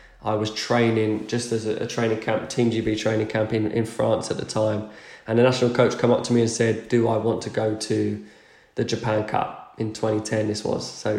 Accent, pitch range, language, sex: British, 110-120 Hz, English, male